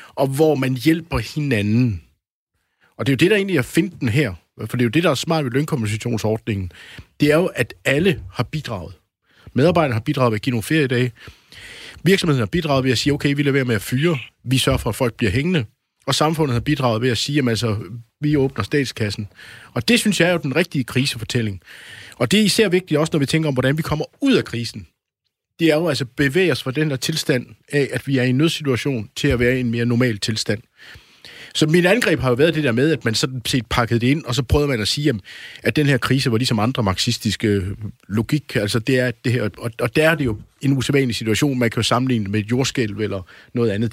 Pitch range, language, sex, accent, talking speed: 115-150 Hz, Danish, male, native, 245 wpm